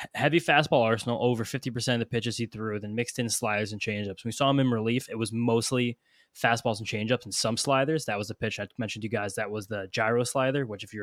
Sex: male